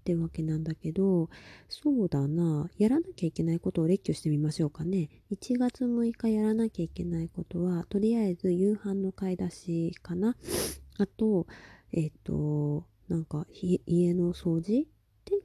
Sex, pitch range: female, 160-205 Hz